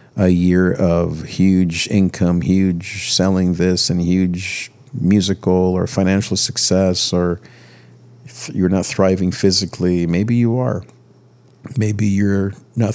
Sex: male